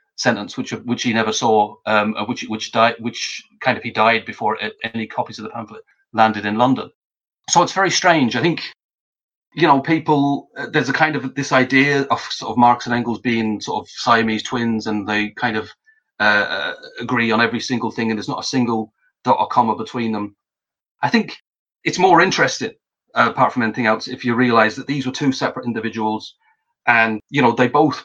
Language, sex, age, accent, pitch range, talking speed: English, male, 30-49, British, 110-140 Hz, 205 wpm